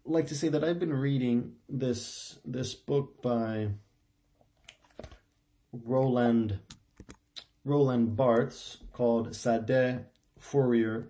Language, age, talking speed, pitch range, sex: English, 30-49, 90 wpm, 105-130 Hz, male